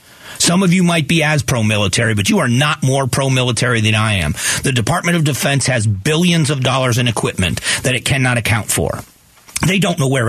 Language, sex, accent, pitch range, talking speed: English, male, American, 120-155 Hz, 205 wpm